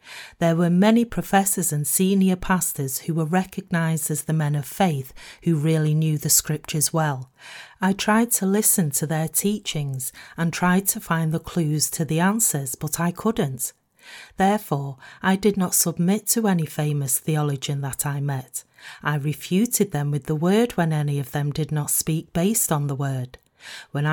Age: 40-59